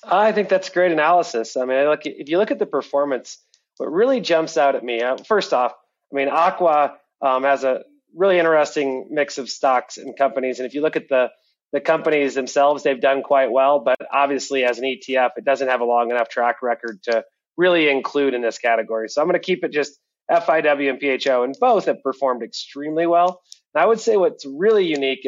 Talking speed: 215 wpm